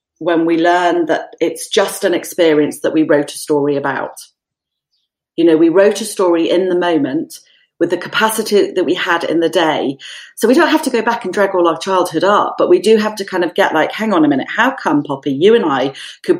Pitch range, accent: 165-245 Hz, British